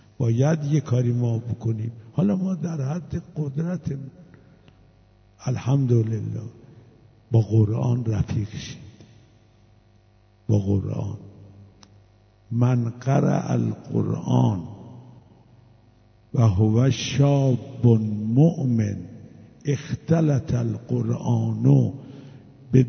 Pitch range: 115-145 Hz